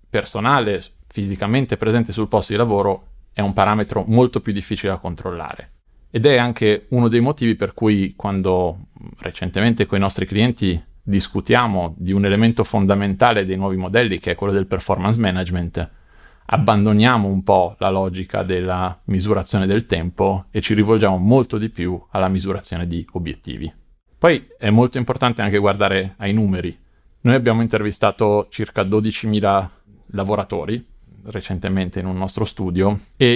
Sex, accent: male, native